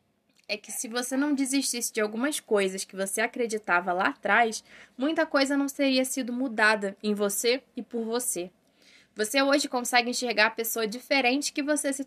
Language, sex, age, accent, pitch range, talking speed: Portuguese, female, 10-29, Brazilian, 215-275 Hz, 175 wpm